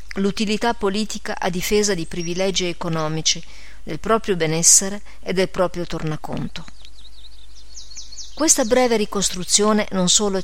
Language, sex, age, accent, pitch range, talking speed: Italian, female, 40-59, native, 165-200 Hz, 110 wpm